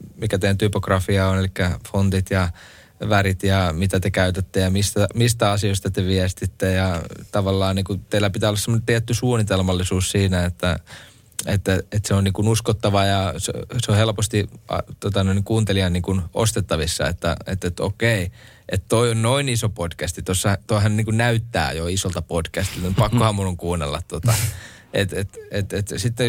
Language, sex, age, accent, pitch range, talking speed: Finnish, male, 20-39, native, 95-110 Hz, 165 wpm